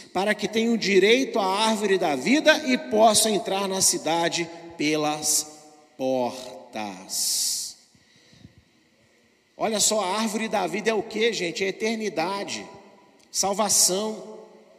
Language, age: Portuguese, 40-59